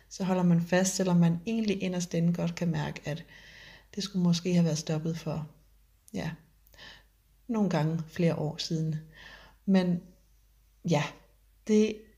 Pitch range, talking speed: 170-195 Hz, 140 wpm